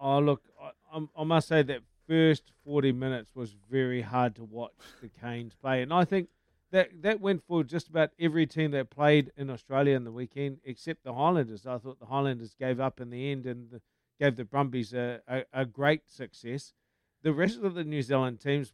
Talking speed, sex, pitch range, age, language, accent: 210 wpm, male, 125-155 Hz, 50-69, English, Australian